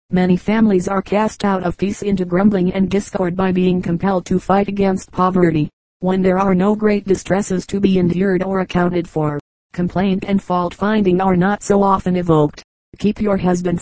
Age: 40-59